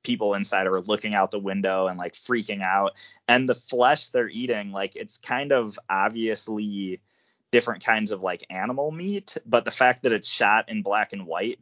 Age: 20-39